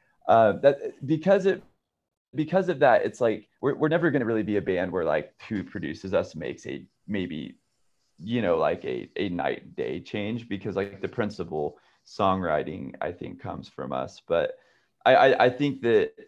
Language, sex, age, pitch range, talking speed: English, male, 20-39, 100-145 Hz, 185 wpm